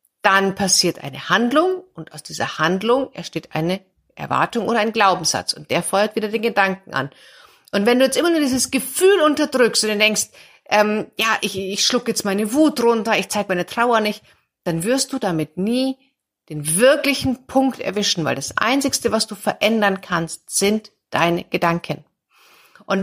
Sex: female